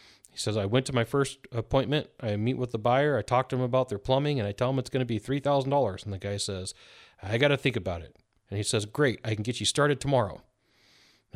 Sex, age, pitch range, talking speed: male, 30-49, 115-150 Hz, 265 wpm